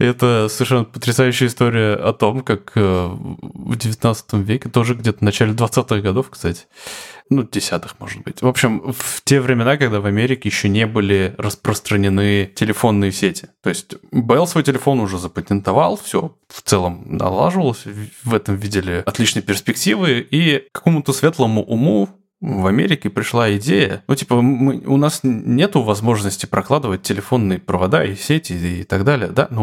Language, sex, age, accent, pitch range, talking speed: Russian, male, 20-39, native, 100-140 Hz, 155 wpm